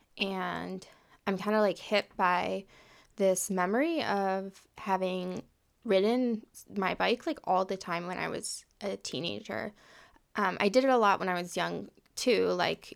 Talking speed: 160 wpm